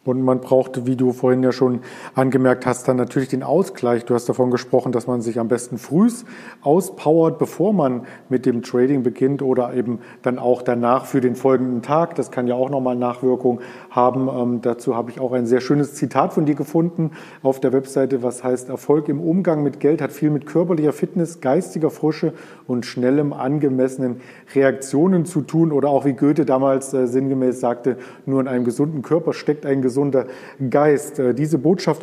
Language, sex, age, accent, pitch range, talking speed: German, male, 40-59, German, 125-145 Hz, 190 wpm